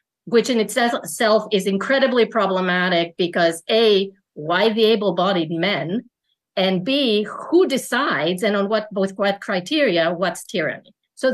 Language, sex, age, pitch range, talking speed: English, female, 50-69, 185-245 Hz, 125 wpm